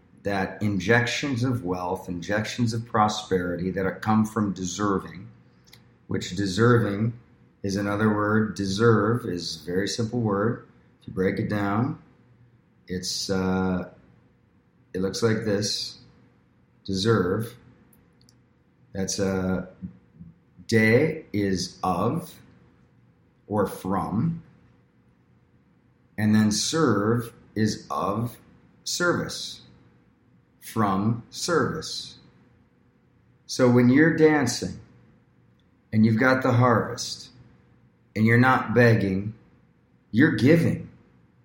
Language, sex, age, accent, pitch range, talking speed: English, male, 40-59, American, 95-120 Hz, 95 wpm